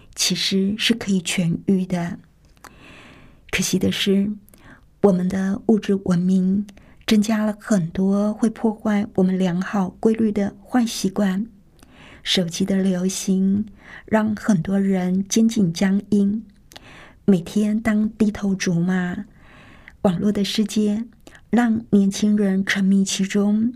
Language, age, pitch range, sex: Chinese, 50-69, 190-210 Hz, female